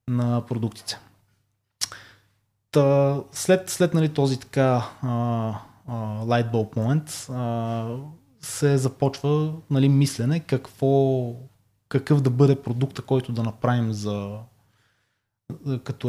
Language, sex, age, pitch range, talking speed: Bulgarian, male, 20-39, 115-140 Hz, 95 wpm